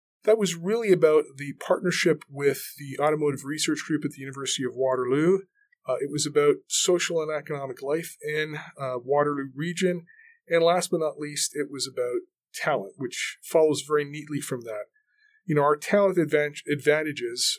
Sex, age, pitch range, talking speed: male, 30-49, 140-190 Hz, 165 wpm